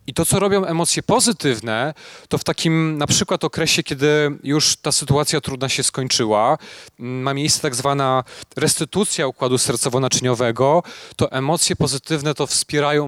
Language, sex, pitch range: Polish, male, 125-155 Hz